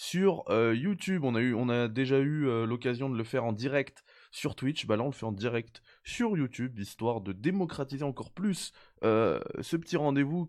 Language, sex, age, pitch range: French, male, 20-39, 105-130 Hz